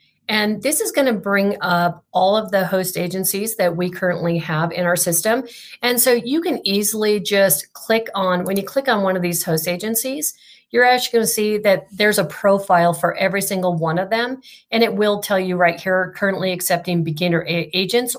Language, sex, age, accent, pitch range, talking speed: English, female, 40-59, American, 175-215 Hz, 205 wpm